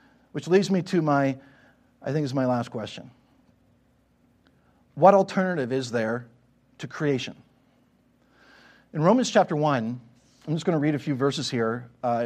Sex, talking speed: male, 150 wpm